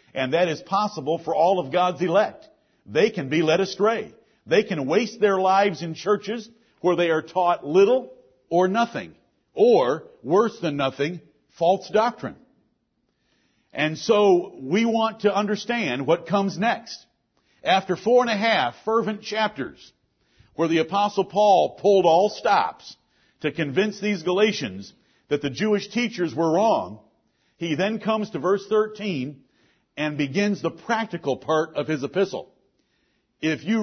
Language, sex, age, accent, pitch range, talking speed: English, male, 50-69, American, 165-215 Hz, 145 wpm